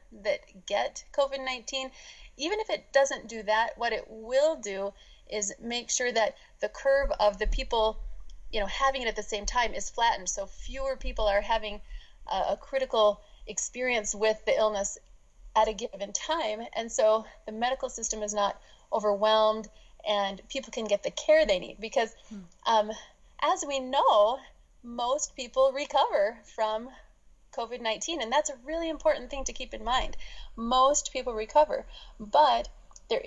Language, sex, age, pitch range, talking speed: English, female, 30-49, 215-270 Hz, 160 wpm